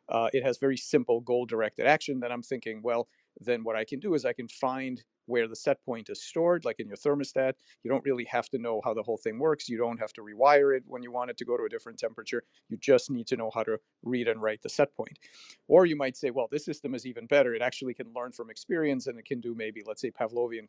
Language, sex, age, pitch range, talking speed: English, male, 40-59, 115-135 Hz, 275 wpm